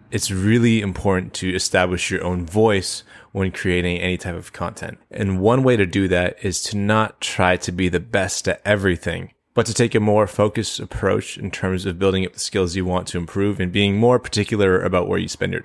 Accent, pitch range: American, 90-105 Hz